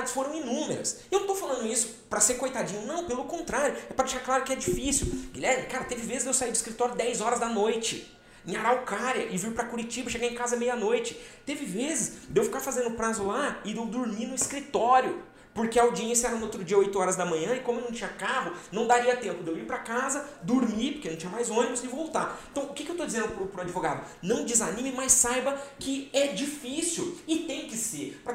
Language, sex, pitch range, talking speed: Portuguese, male, 200-260 Hz, 230 wpm